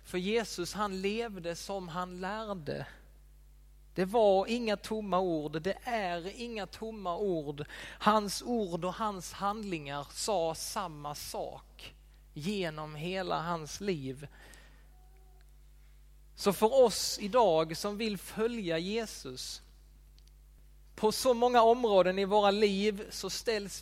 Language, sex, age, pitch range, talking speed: Swedish, male, 30-49, 125-210 Hz, 115 wpm